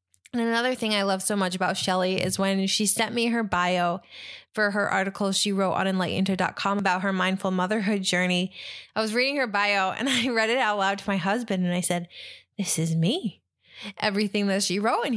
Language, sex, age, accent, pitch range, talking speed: English, female, 20-39, American, 185-220 Hz, 210 wpm